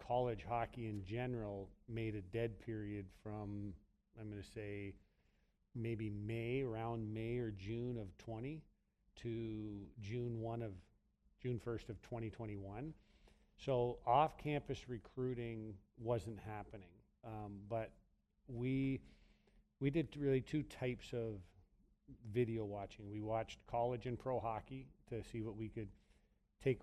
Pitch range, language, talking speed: 105-120 Hz, English, 130 wpm